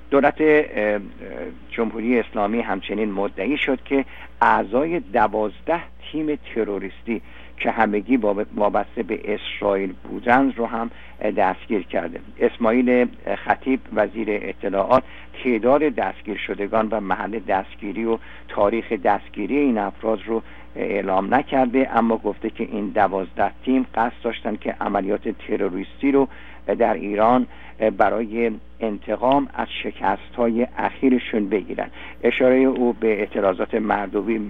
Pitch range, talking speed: 105-125 Hz, 115 wpm